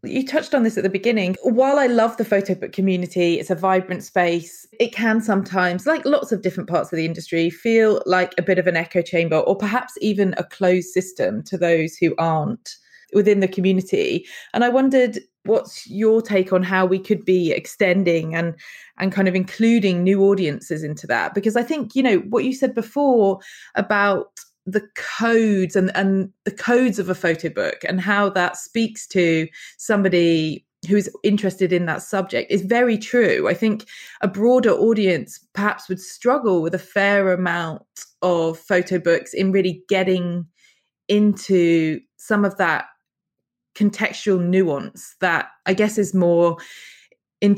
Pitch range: 175-215 Hz